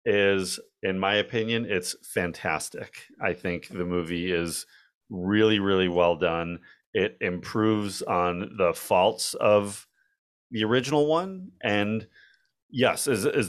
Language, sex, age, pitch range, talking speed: English, male, 30-49, 90-115 Hz, 125 wpm